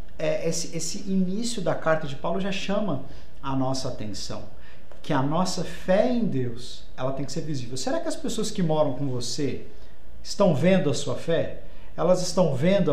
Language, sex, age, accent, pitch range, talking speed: Portuguese, male, 50-69, Brazilian, 135-185 Hz, 180 wpm